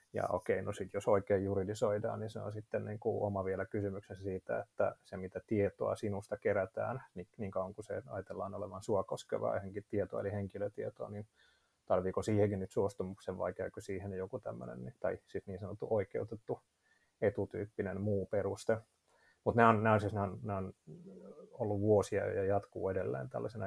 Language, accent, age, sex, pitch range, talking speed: Finnish, native, 30-49, male, 100-110 Hz, 175 wpm